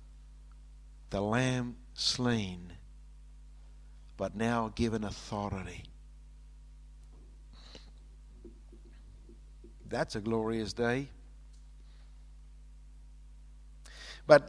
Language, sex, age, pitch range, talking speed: English, male, 60-79, 110-175 Hz, 50 wpm